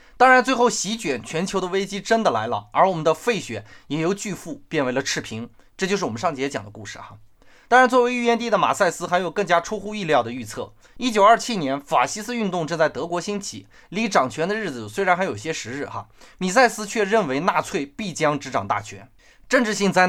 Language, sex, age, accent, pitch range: Chinese, male, 20-39, native, 140-210 Hz